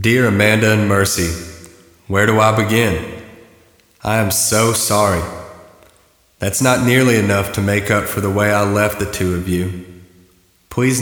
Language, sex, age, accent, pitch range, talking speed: English, male, 30-49, American, 95-115 Hz, 160 wpm